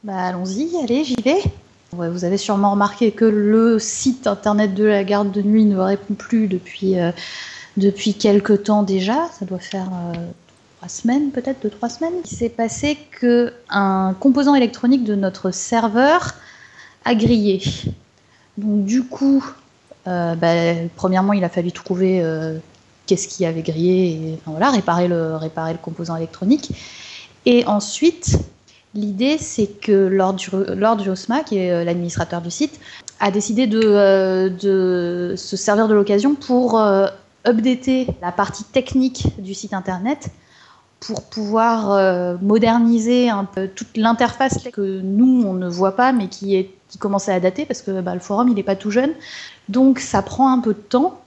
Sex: female